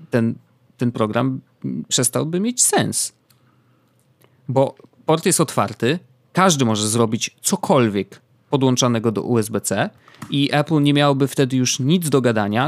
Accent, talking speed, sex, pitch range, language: native, 125 wpm, male, 115-150 Hz, Polish